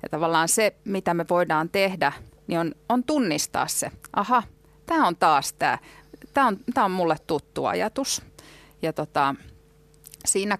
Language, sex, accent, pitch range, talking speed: Finnish, female, native, 155-220 Hz, 145 wpm